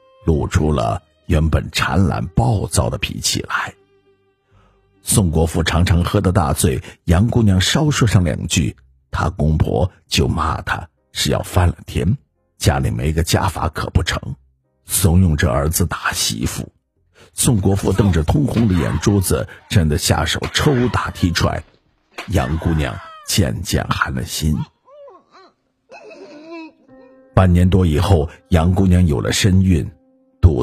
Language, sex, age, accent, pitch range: Chinese, male, 50-69, native, 80-110 Hz